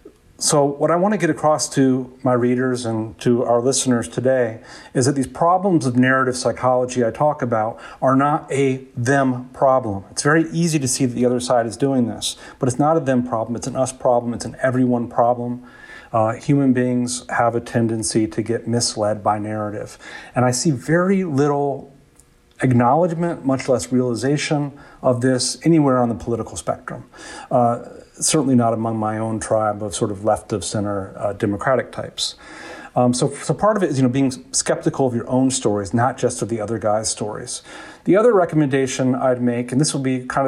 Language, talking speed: English, 195 wpm